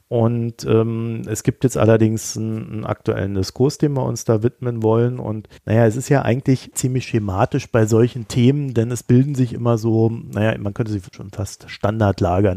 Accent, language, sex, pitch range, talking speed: German, German, male, 100-125 Hz, 190 wpm